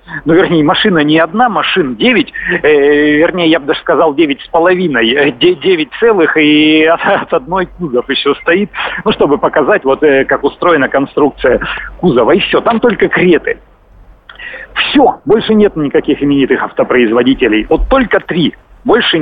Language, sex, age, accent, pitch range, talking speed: Russian, male, 50-69, native, 150-210 Hz, 150 wpm